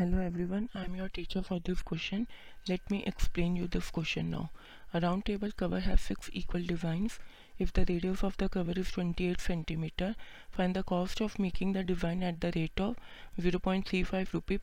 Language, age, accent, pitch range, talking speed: Hindi, 30-49, native, 175-200 Hz, 190 wpm